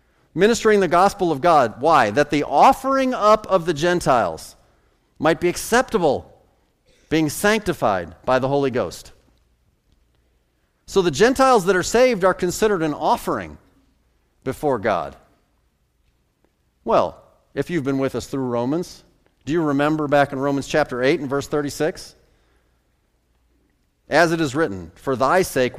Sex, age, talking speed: male, 40-59, 140 wpm